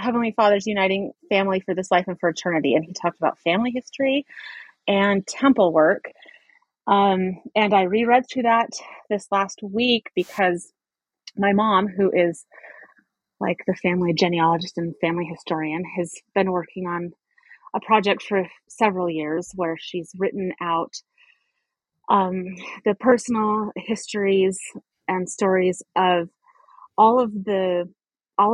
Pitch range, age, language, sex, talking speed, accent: 175-220 Hz, 30-49, English, female, 135 wpm, American